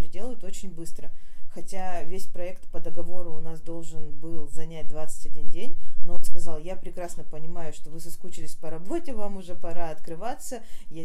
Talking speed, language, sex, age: 170 wpm, Russian, female, 20-39